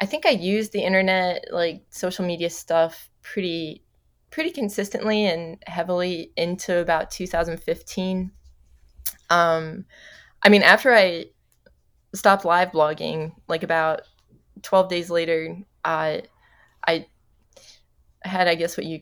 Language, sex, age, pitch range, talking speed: English, female, 20-39, 160-185 Hz, 125 wpm